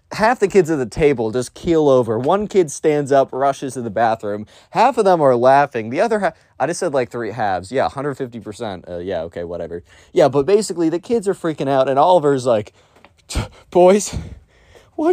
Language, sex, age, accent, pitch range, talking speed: English, male, 30-49, American, 120-185 Hz, 200 wpm